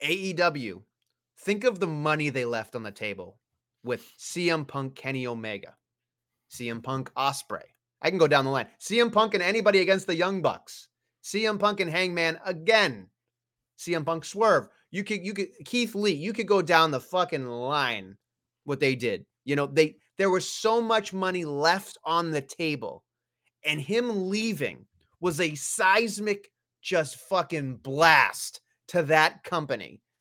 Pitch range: 135-190 Hz